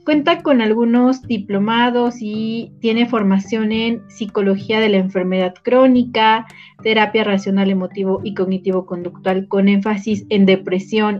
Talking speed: 120 wpm